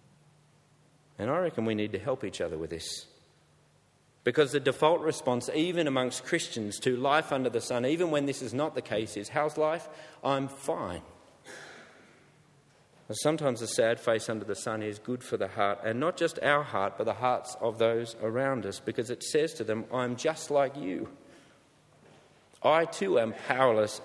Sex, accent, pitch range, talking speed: male, Australian, 110-145 Hz, 180 wpm